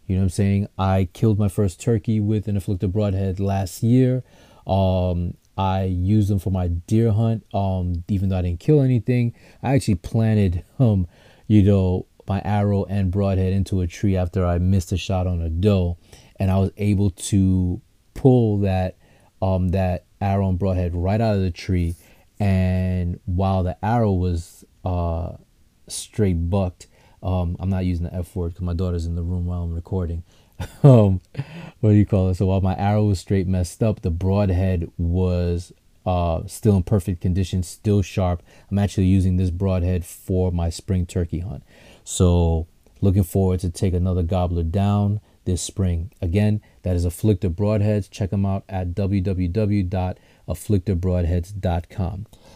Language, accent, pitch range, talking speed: English, American, 90-105 Hz, 170 wpm